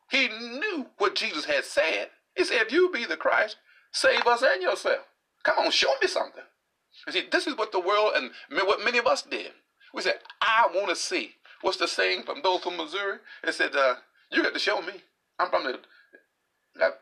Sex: male